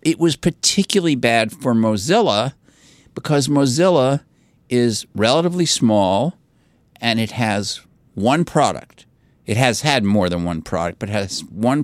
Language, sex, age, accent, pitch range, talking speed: English, male, 50-69, American, 90-115 Hz, 130 wpm